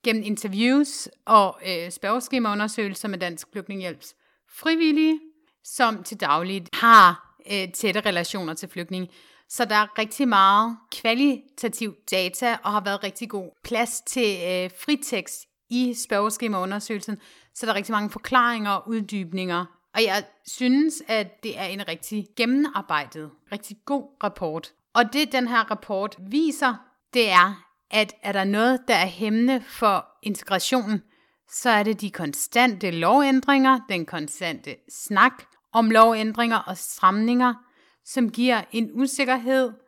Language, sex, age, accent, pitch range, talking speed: Danish, female, 30-49, native, 195-245 Hz, 135 wpm